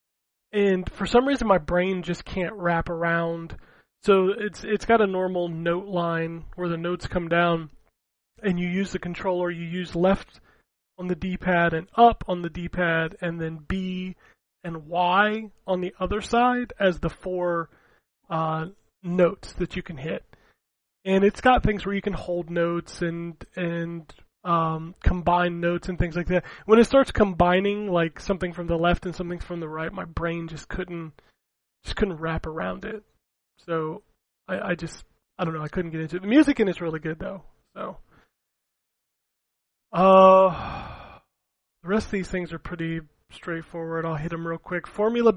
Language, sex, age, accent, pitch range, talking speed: English, male, 20-39, American, 170-190 Hz, 175 wpm